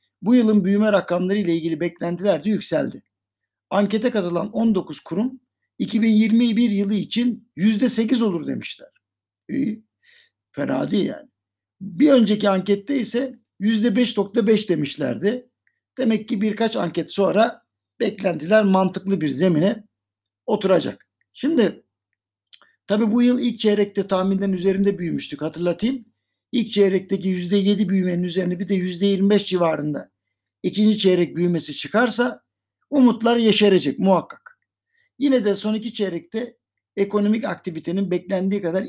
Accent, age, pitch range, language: native, 60-79, 175-225 Hz, Turkish